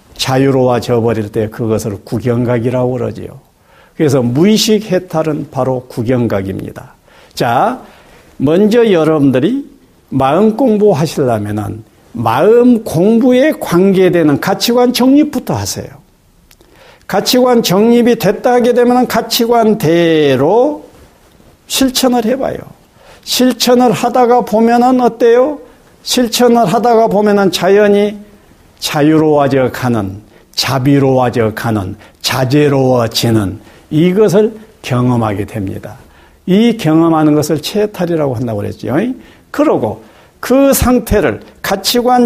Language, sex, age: Korean, male, 50-69